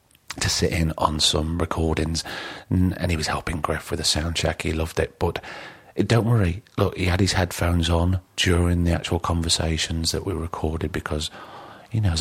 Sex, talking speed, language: male, 180 wpm, English